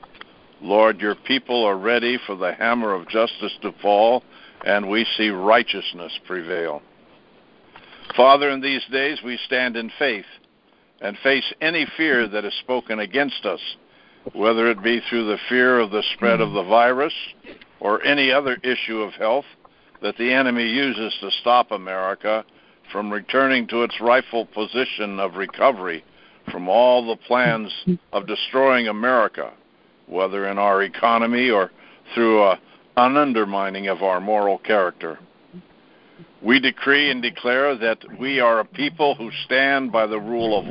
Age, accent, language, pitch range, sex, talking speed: 60-79, American, English, 105-135 Hz, male, 150 wpm